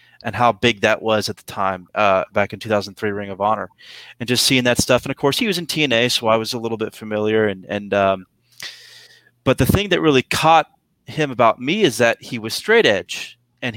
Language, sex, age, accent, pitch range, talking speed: English, male, 30-49, American, 110-135 Hz, 230 wpm